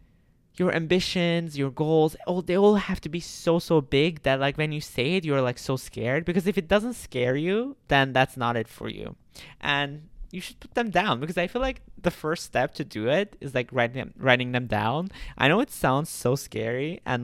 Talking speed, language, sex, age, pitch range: 225 wpm, English, male, 20-39, 125-175 Hz